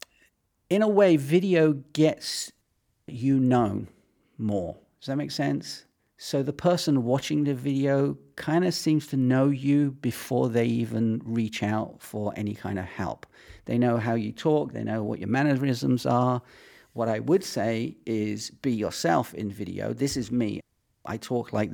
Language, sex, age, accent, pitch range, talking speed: English, male, 40-59, British, 110-145 Hz, 165 wpm